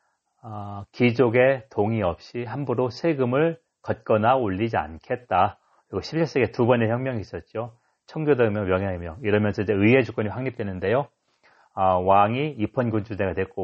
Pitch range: 105-140 Hz